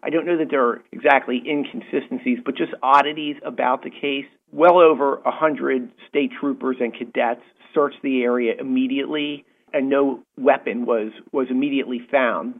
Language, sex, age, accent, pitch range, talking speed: English, male, 40-59, American, 120-140 Hz, 150 wpm